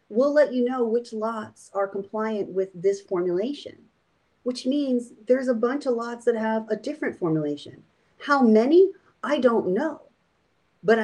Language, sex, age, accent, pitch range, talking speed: English, female, 40-59, American, 220-300 Hz, 160 wpm